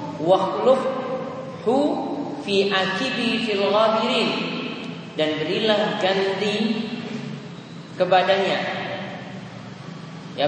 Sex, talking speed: male, 65 wpm